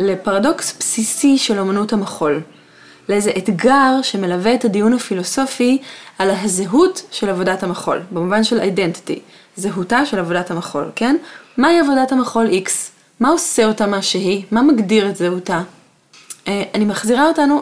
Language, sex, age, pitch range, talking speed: Hebrew, female, 20-39, 195-295 Hz, 135 wpm